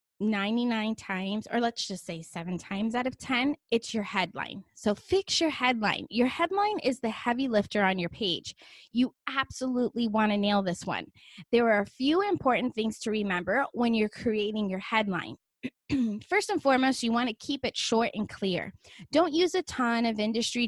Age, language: 20-39, English